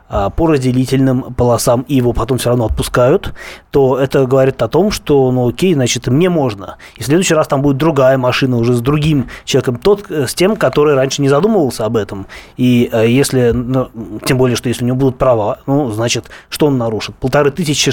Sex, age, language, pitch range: male, 20-39, Russian, 120-145 Hz